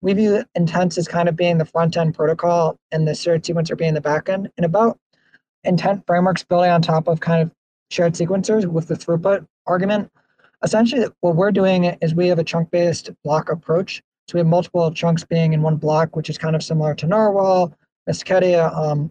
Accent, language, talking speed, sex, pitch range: American, English, 195 wpm, male, 160-175 Hz